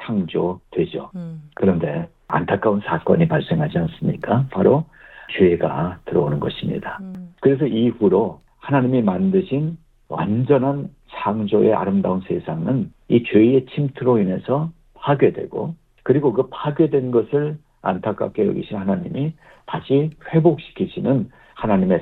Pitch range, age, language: 110-150 Hz, 50-69, Korean